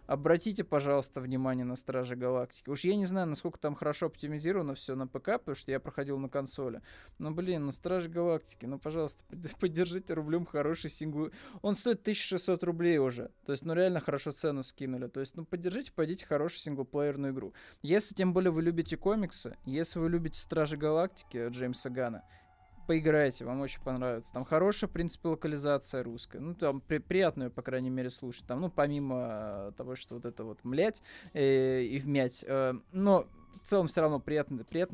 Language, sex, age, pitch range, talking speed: Russian, male, 20-39, 130-160 Hz, 185 wpm